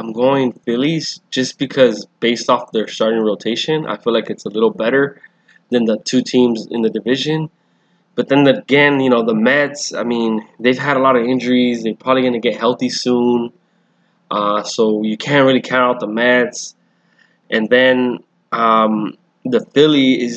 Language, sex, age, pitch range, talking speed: English, male, 20-39, 110-130 Hz, 175 wpm